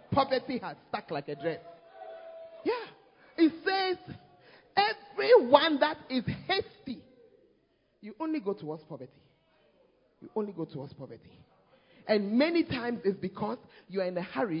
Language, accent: English, Nigerian